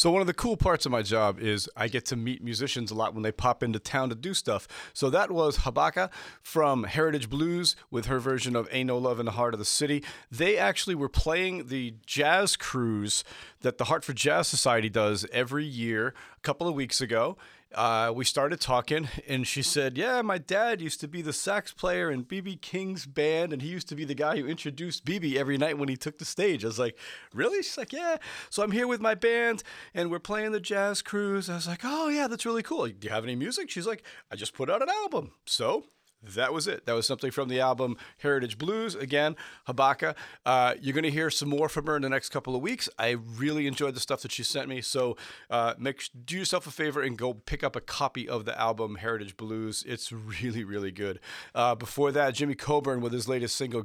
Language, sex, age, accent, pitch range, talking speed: English, male, 30-49, American, 120-170 Hz, 235 wpm